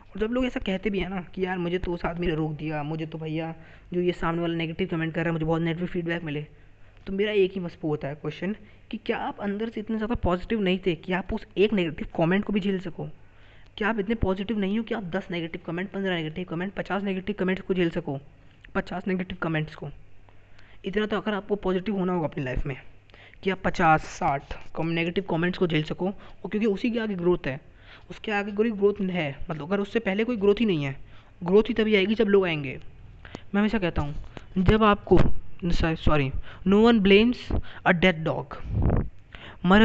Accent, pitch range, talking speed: native, 155-200 Hz, 220 wpm